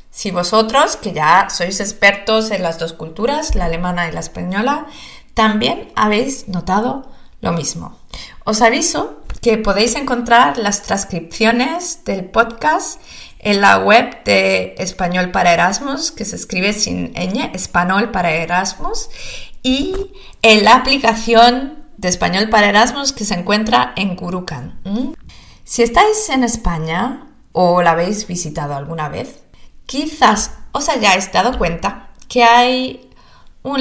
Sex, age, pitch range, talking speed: female, 20-39, 180-265 Hz, 135 wpm